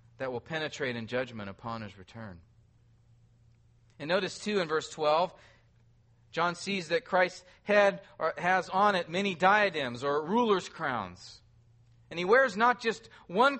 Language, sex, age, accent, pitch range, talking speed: English, male, 40-59, American, 115-195 Hz, 145 wpm